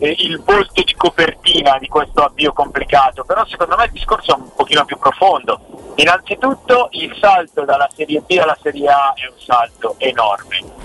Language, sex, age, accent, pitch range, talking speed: Italian, male, 50-69, native, 145-210 Hz, 170 wpm